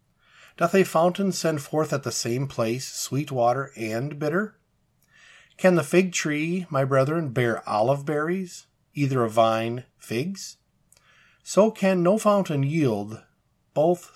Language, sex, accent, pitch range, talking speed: English, male, American, 120-170 Hz, 135 wpm